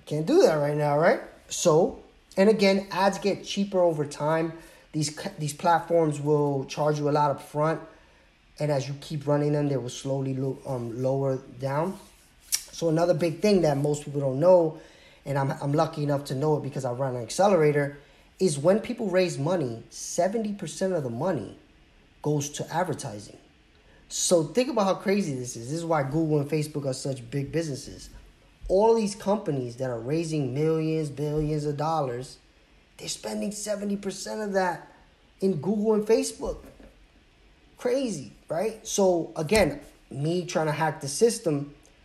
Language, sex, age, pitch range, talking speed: English, male, 20-39, 140-180 Hz, 170 wpm